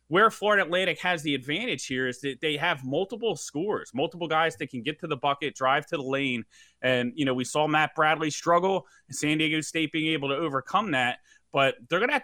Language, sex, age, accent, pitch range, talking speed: English, male, 30-49, American, 135-175 Hz, 225 wpm